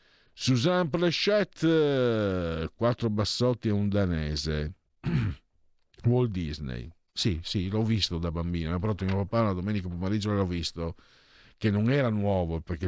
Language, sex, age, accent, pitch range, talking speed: Italian, male, 50-69, native, 85-135 Hz, 135 wpm